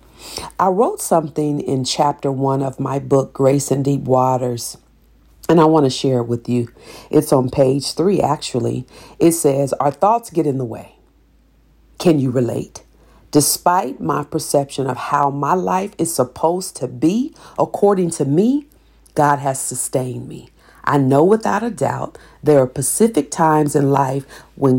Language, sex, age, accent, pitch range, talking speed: English, female, 50-69, American, 125-155 Hz, 160 wpm